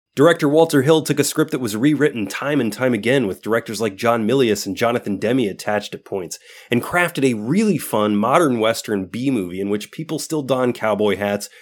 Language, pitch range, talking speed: English, 110-150 Hz, 200 wpm